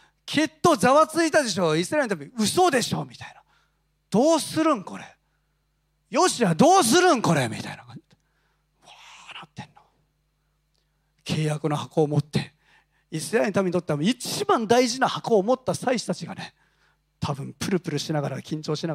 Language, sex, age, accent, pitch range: Japanese, male, 40-59, native, 155-235 Hz